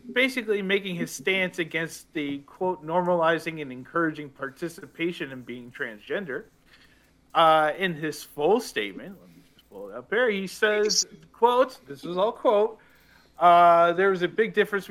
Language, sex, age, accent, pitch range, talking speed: English, male, 40-59, American, 160-200 Hz, 155 wpm